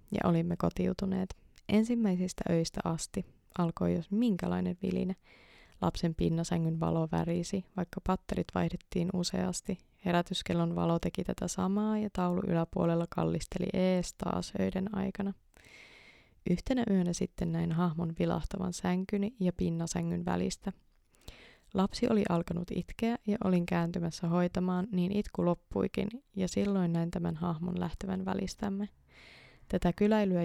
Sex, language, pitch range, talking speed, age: female, Finnish, 165-185 Hz, 120 wpm, 20-39